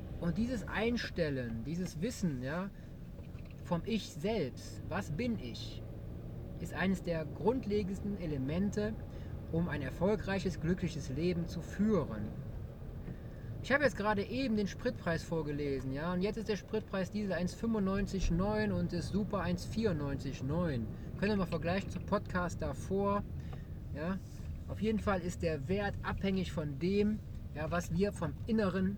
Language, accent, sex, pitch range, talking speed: German, German, male, 140-205 Hz, 135 wpm